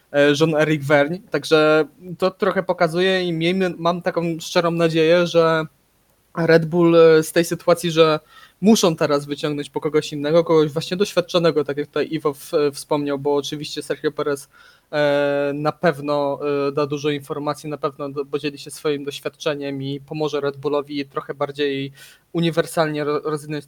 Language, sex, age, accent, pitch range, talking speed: Polish, male, 20-39, native, 145-165 Hz, 155 wpm